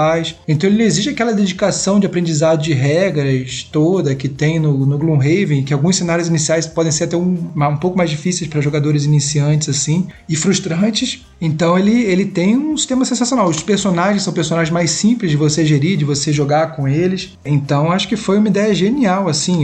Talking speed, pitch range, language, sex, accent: 190 wpm, 155-210 Hz, Portuguese, male, Brazilian